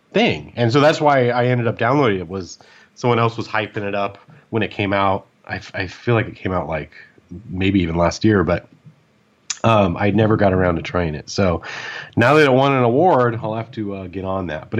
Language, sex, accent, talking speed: English, male, American, 230 wpm